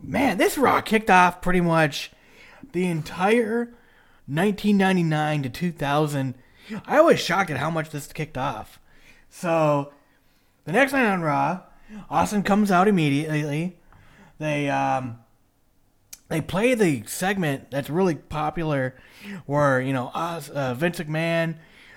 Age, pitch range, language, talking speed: 30-49, 135-195 Hz, English, 130 wpm